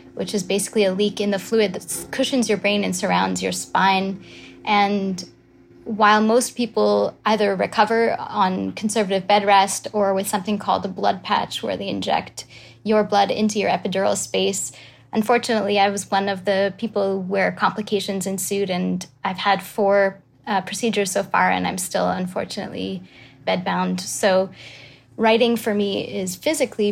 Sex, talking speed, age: female, 160 wpm, 20-39